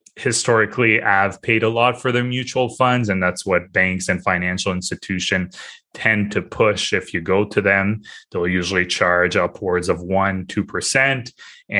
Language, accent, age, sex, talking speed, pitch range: English, Canadian, 20-39, male, 160 wpm, 90-110 Hz